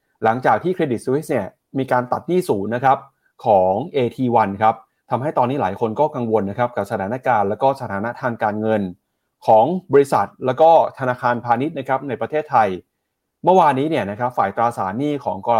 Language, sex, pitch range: Thai, male, 115-150 Hz